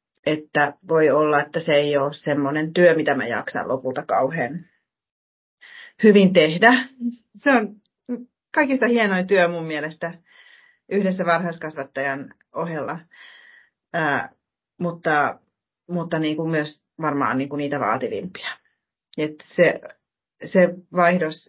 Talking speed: 105 wpm